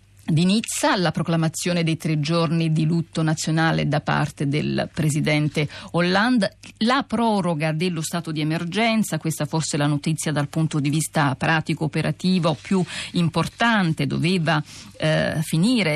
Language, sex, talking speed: Italian, female, 130 wpm